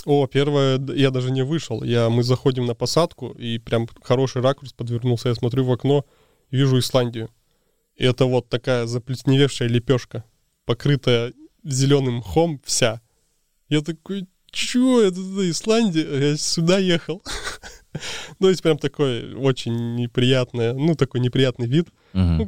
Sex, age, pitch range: male, 20-39, 120-140 Hz